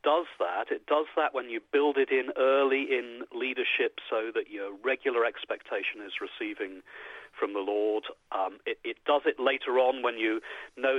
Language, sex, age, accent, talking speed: English, male, 40-59, British, 180 wpm